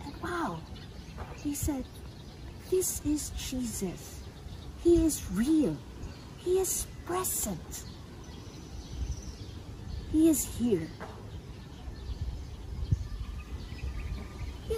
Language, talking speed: English, 60 wpm